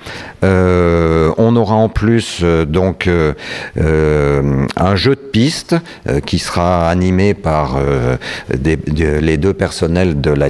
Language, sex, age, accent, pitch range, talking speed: French, male, 50-69, French, 85-115 Hz, 145 wpm